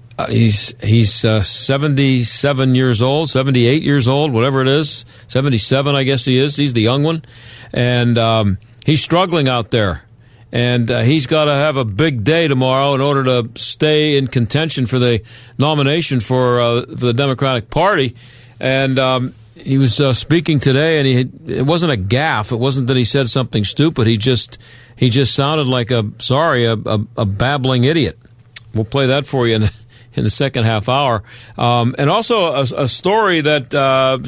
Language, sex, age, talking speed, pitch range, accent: English, male, 50-69, 185 wpm, 120-145 Hz, American